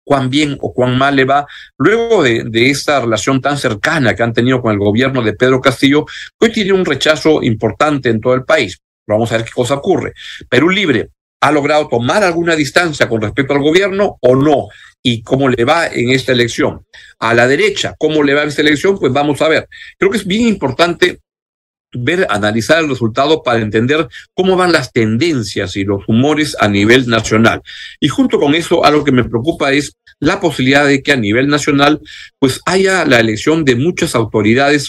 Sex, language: male, Spanish